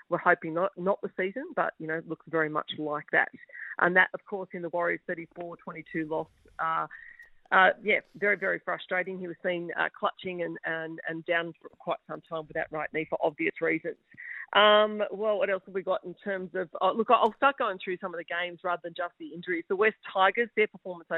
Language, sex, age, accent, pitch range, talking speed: English, female, 40-59, Australian, 165-195 Hz, 235 wpm